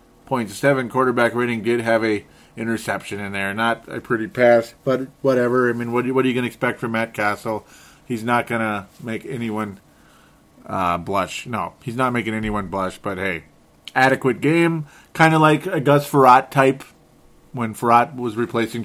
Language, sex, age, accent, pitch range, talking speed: English, male, 30-49, American, 105-130 Hz, 185 wpm